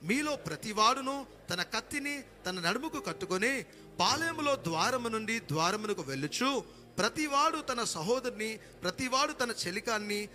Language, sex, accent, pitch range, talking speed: Telugu, male, native, 185-255 Hz, 110 wpm